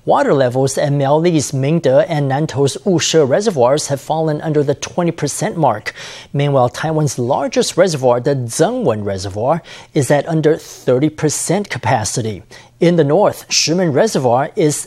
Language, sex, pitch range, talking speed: English, male, 140-170 Hz, 135 wpm